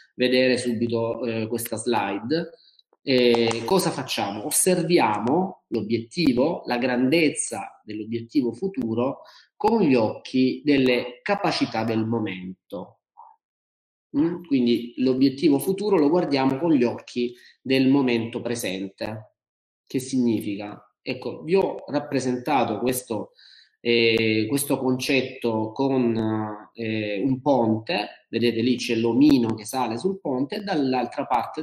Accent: native